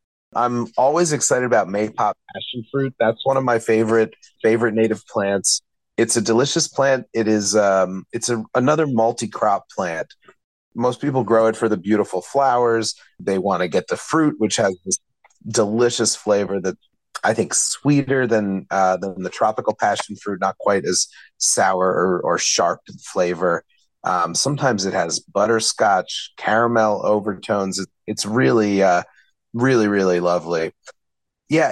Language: English